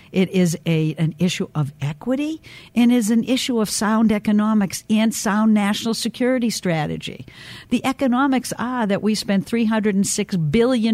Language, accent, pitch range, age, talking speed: English, American, 160-210 Hz, 60-79, 150 wpm